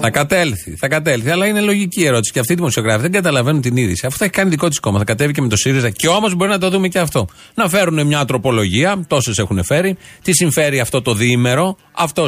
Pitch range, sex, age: 120-170 Hz, male, 30-49